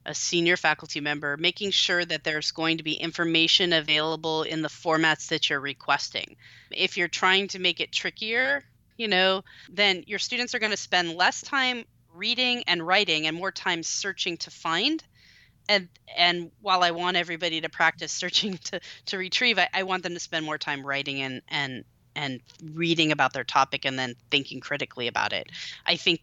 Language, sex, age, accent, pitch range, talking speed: English, female, 30-49, American, 145-180 Hz, 190 wpm